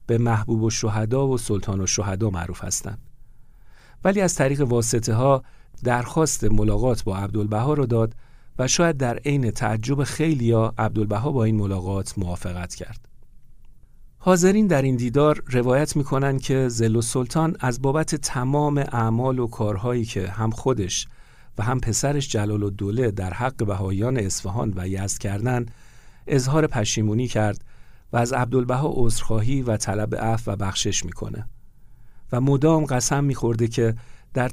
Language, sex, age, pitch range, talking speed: Persian, male, 50-69, 105-135 Hz, 145 wpm